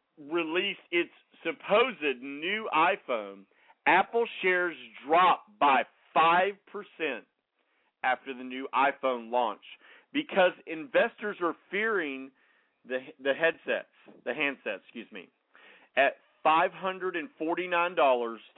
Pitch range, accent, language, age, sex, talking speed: 140-205 Hz, American, English, 50-69, male, 90 wpm